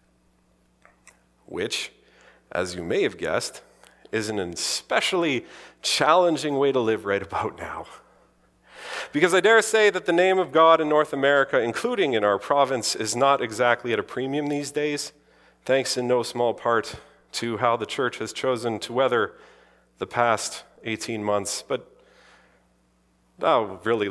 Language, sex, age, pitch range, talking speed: English, male, 40-59, 105-150 Hz, 145 wpm